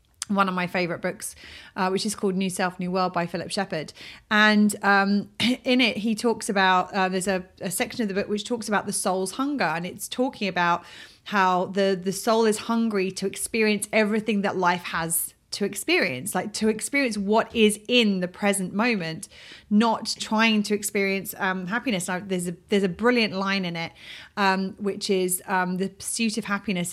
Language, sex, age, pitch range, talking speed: English, female, 30-49, 190-235 Hz, 190 wpm